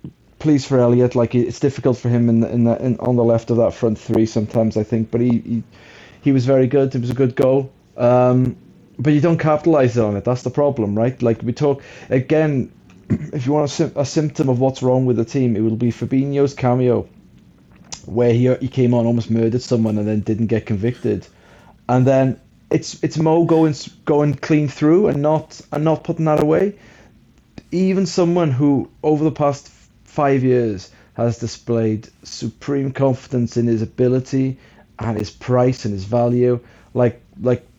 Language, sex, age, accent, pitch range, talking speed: English, male, 30-49, British, 115-135 Hz, 190 wpm